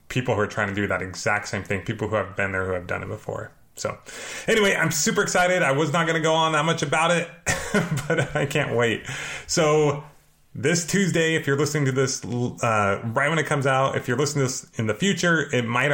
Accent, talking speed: American, 240 wpm